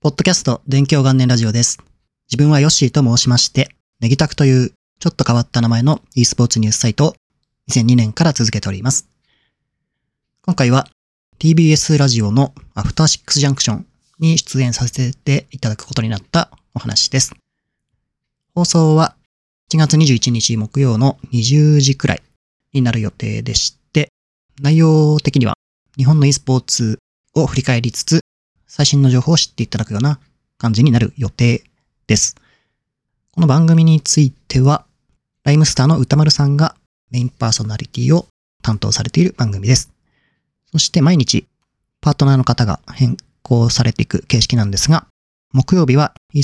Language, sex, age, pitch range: Japanese, male, 30-49, 115-150 Hz